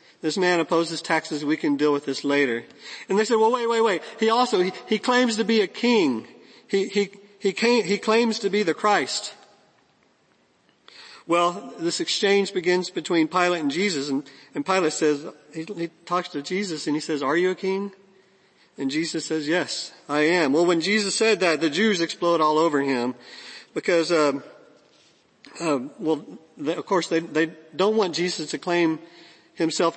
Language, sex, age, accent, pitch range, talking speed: English, male, 50-69, American, 155-200 Hz, 185 wpm